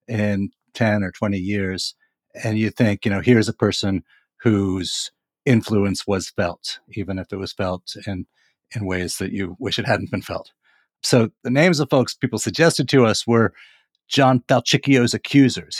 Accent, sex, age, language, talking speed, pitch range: American, male, 50-69, English, 170 wpm, 95-120 Hz